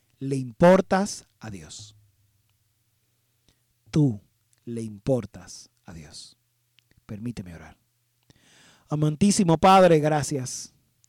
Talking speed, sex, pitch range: 75 wpm, male, 115-150 Hz